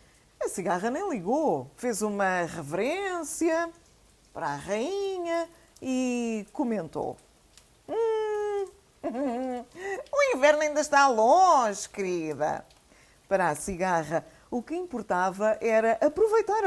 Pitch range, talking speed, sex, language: 175-285 Hz, 95 wpm, female, English